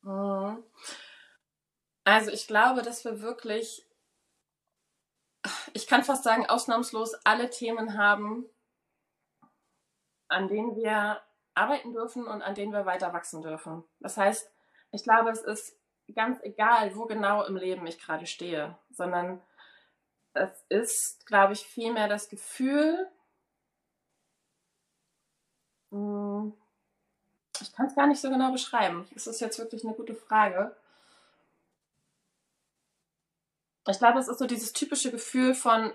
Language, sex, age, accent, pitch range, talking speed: German, female, 20-39, German, 200-235 Hz, 120 wpm